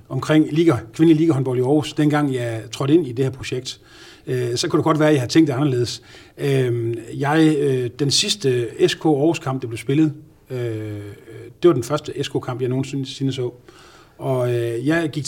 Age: 30-49